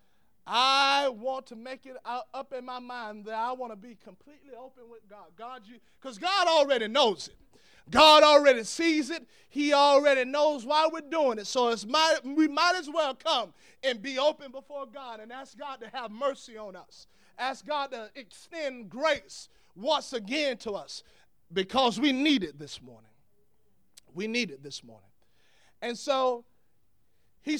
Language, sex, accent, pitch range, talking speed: English, male, American, 235-310 Hz, 175 wpm